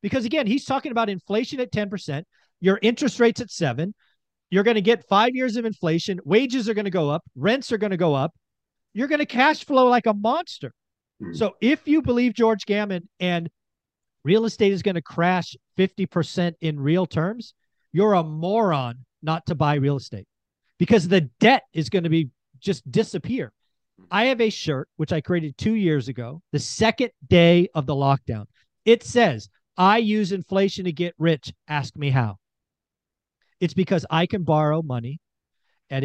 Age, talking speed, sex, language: 40-59, 180 wpm, male, English